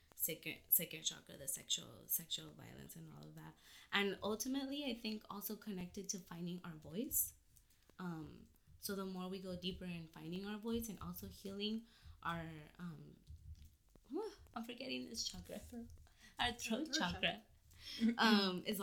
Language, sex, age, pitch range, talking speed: English, female, 20-39, 155-195 Hz, 150 wpm